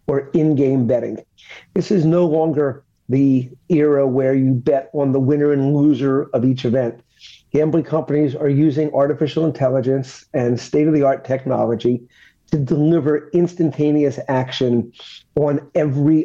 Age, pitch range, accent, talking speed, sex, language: 50-69, 130-155 Hz, American, 130 wpm, male, English